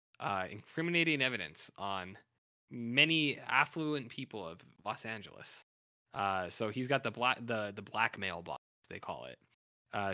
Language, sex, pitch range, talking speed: English, male, 100-130 Hz, 140 wpm